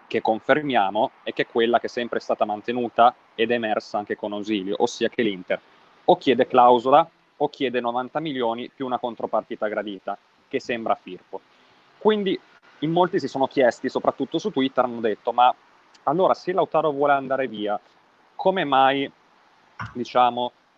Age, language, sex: 30-49, Italian, male